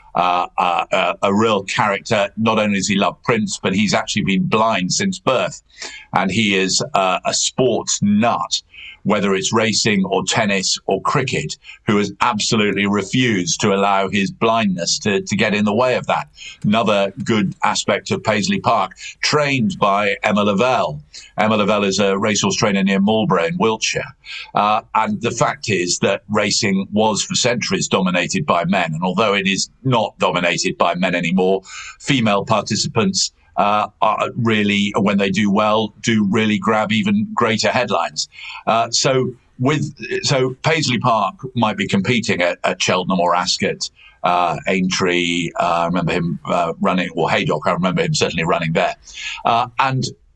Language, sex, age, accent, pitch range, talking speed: English, male, 50-69, British, 95-130 Hz, 165 wpm